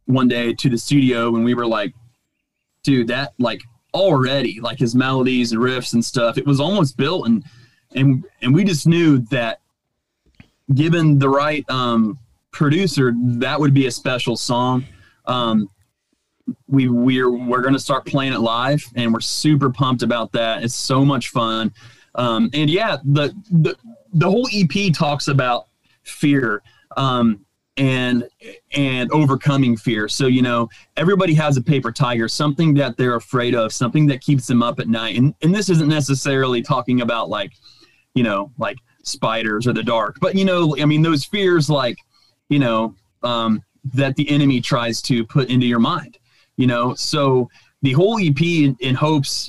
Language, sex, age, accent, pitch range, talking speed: English, male, 30-49, American, 120-145 Hz, 170 wpm